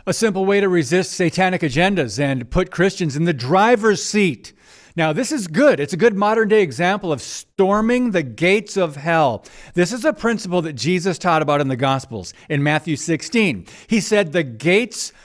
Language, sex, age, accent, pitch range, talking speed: English, male, 50-69, American, 155-215 Hz, 190 wpm